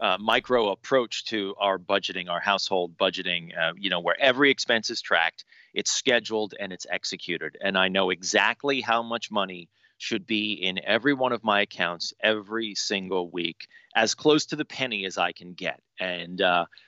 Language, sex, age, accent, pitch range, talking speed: English, male, 30-49, American, 95-130 Hz, 180 wpm